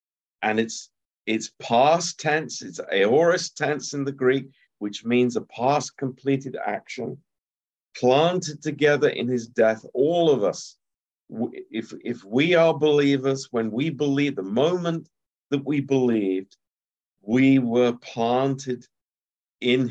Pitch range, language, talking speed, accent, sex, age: 105-140 Hz, Romanian, 125 wpm, British, male, 50-69